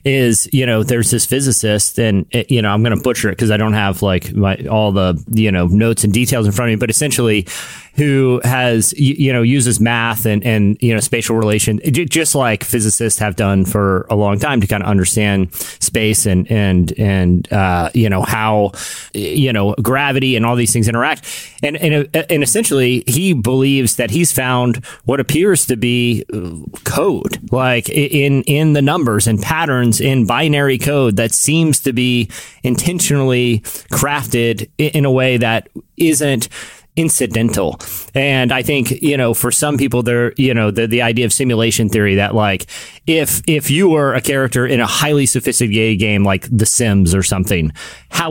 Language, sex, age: English, male, 30-49